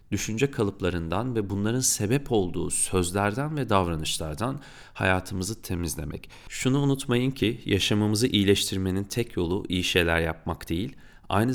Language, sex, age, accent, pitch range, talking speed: Turkish, male, 40-59, native, 90-110 Hz, 120 wpm